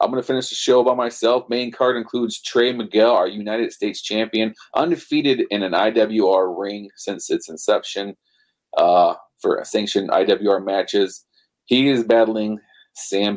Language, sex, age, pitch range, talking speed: English, male, 30-49, 100-125 Hz, 155 wpm